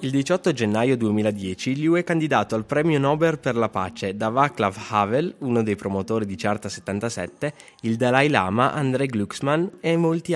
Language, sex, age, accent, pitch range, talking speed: Italian, male, 20-39, native, 105-145 Hz, 170 wpm